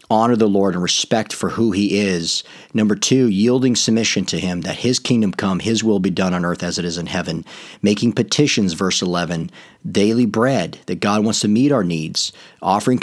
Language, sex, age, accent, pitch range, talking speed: English, male, 40-59, American, 95-110 Hz, 205 wpm